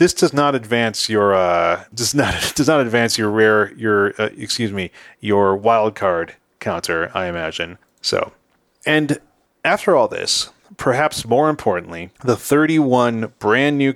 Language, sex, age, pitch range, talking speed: English, male, 30-49, 100-125 Hz, 155 wpm